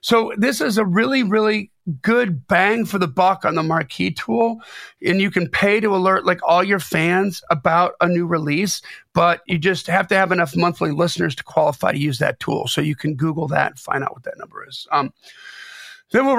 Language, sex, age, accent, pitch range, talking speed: English, male, 40-59, American, 155-205 Hz, 215 wpm